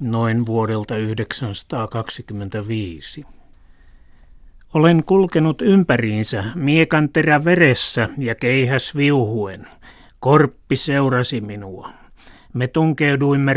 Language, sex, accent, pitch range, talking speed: Finnish, male, native, 110-140 Hz, 75 wpm